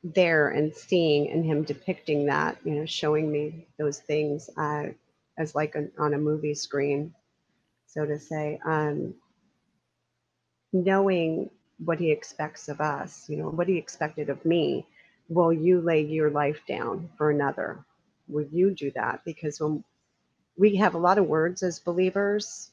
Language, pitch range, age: English, 150-175 Hz, 40-59